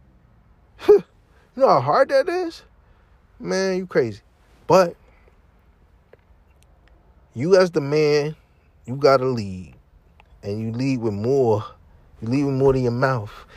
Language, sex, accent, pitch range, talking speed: English, male, American, 90-150 Hz, 135 wpm